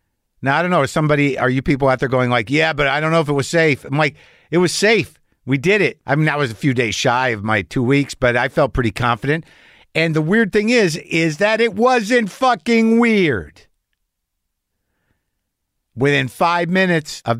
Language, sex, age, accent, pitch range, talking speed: English, male, 50-69, American, 115-165 Hz, 215 wpm